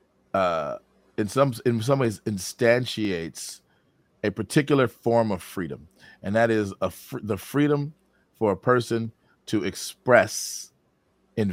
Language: English